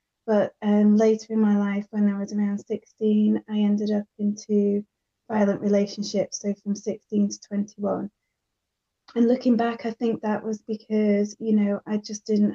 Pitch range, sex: 200-210 Hz, female